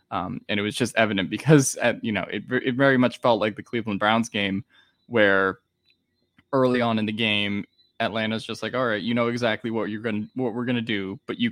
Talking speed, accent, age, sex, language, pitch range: 235 wpm, American, 10-29, male, English, 105-130 Hz